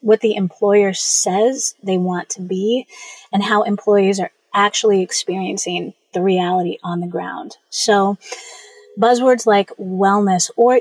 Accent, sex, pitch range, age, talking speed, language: American, female, 190-235 Hz, 30-49, 135 wpm, English